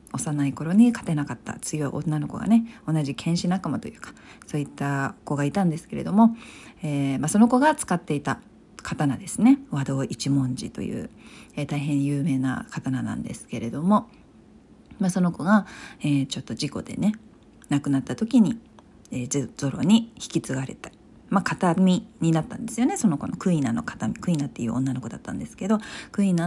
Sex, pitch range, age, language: female, 145-220 Hz, 40-59, Japanese